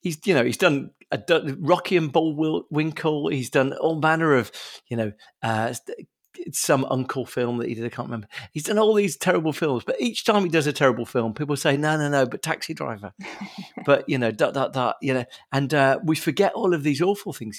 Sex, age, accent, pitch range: male, 40-59, British, 115-155 Hz